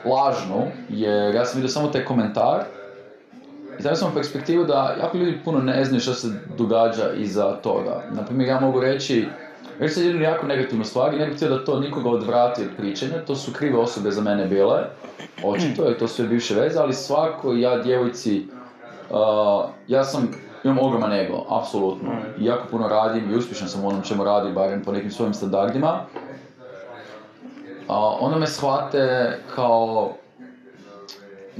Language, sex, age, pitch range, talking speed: Croatian, male, 20-39, 105-135 Hz, 170 wpm